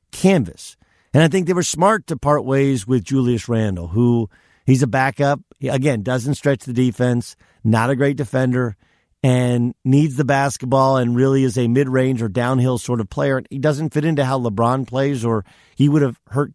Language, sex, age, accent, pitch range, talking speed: English, male, 50-69, American, 115-140 Hz, 190 wpm